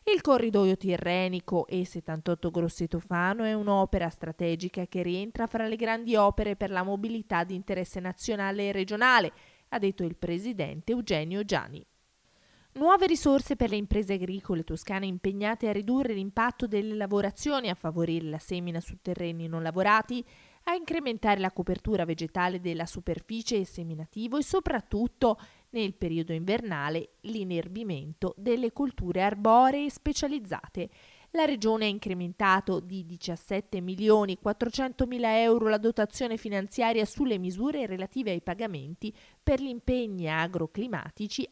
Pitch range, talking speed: 180-230 Hz, 125 wpm